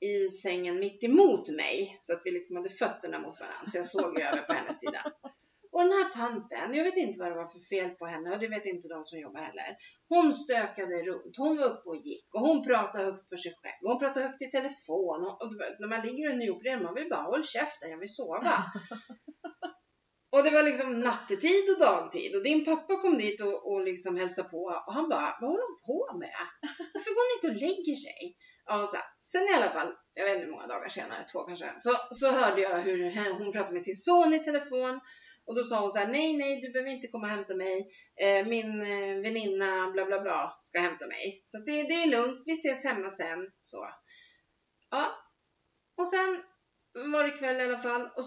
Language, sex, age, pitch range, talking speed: Swedish, female, 30-49, 195-315 Hz, 225 wpm